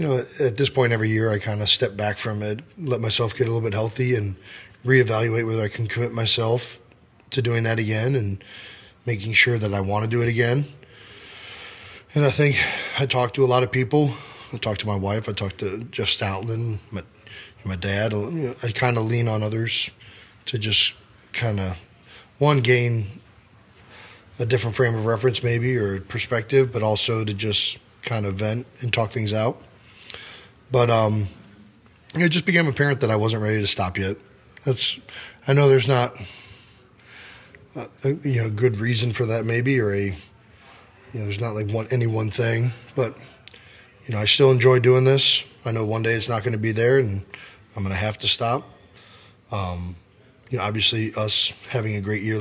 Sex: male